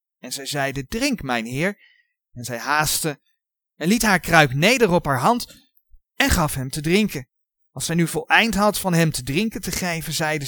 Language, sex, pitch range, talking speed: Dutch, male, 140-210 Hz, 195 wpm